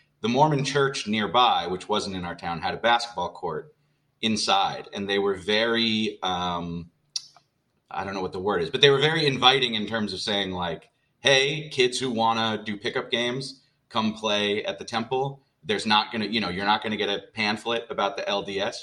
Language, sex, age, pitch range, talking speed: English, male, 30-49, 95-135 Hz, 205 wpm